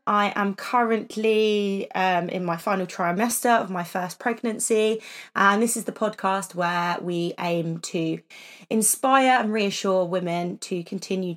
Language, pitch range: English, 185-230 Hz